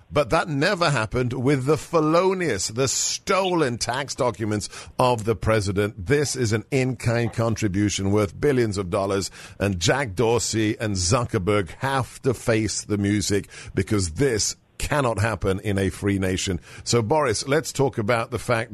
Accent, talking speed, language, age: British, 155 wpm, English, 50-69